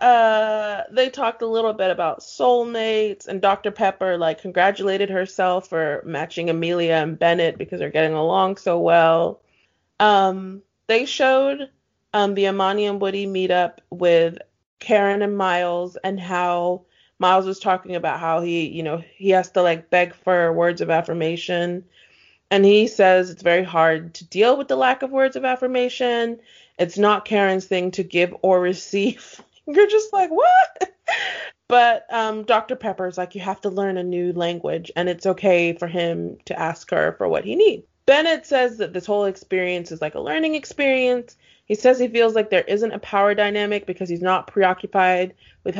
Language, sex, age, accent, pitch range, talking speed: English, female, 30-49, American, 180-245 Hz, 175 wpm